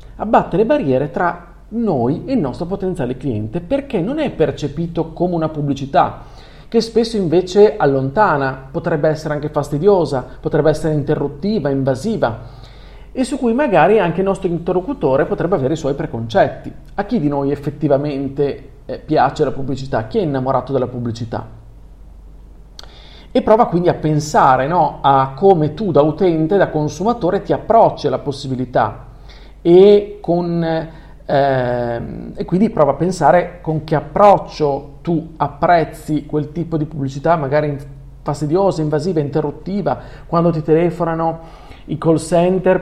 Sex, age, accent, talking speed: male, 40-59, native, 135 wpm